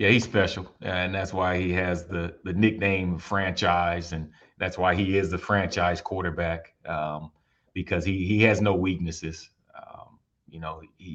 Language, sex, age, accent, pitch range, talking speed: English, male, 30-49, American, 85-90 Hz, 165 wpm